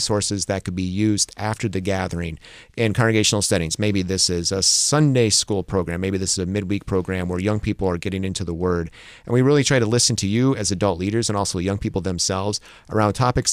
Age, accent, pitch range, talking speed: 30-49, American, 95-115 Hz, 220 wpm